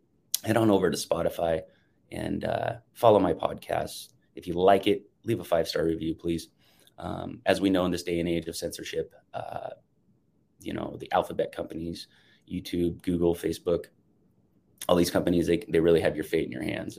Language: English